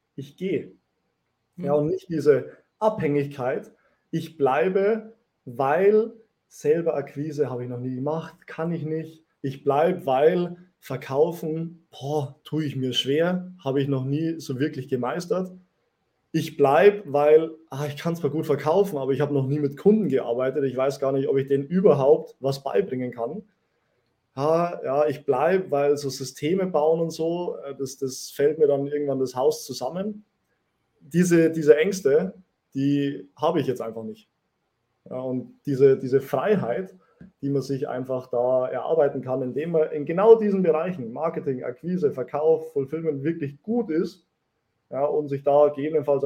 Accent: German